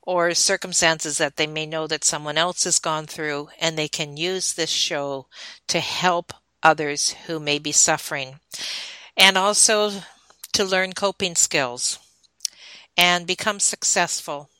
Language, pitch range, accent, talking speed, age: English, 155-180 Hz, American, 140 wpm, 50-69